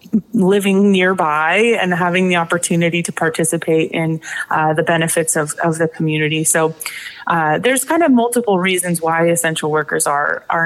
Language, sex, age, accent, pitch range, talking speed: English, female, 20-39, American, 160-195 Hz, 160 wpm